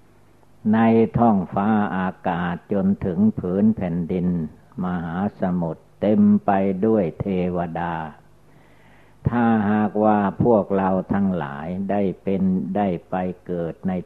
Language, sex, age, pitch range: Thai, male, 60-79, 90-110 Hz